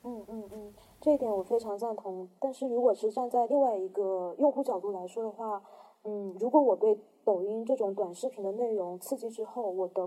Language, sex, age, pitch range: Chinese, female, 20-39, 195-240 Hz